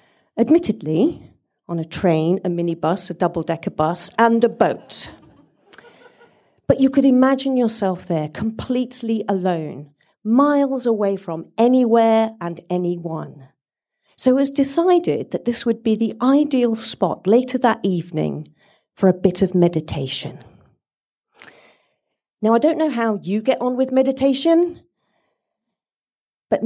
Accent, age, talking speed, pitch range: British, 40-59, 125 wpm, 170-235 Hz